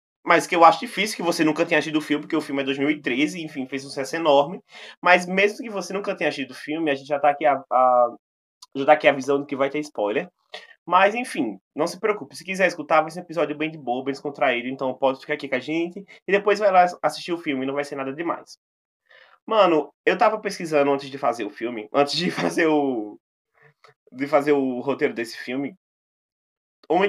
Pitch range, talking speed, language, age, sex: 140-180 Hz, 230 wpm, Portuguese, 20-39, male